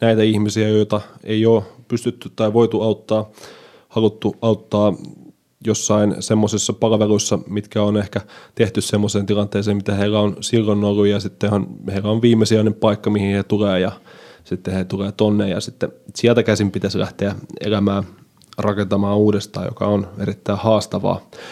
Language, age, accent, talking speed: Finnish, 20-39, native, 150 wpm